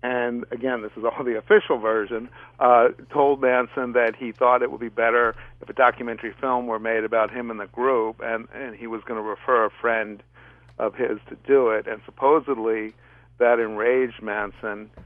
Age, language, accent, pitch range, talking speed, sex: 50-69, English, American, 105-120 Hz, 190 wpm, male